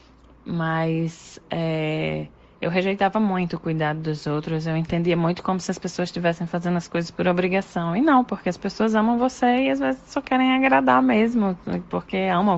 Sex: female